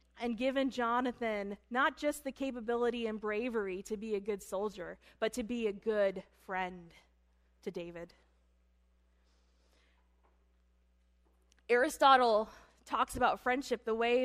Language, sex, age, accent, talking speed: English, female, 20-39, American, 120 wpm